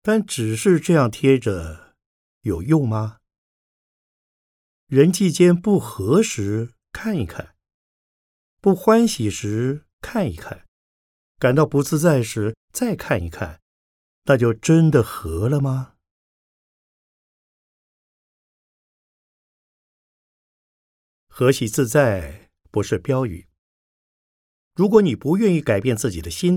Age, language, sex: 50-69, Chinese, male